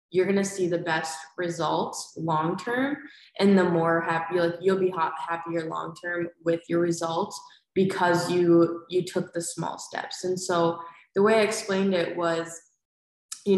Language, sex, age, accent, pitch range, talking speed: English, female, 20-39, American, 170-195 Hz, 155 wpm